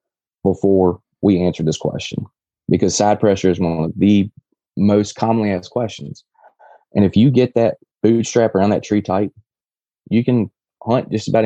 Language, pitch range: English, 95-110 Hz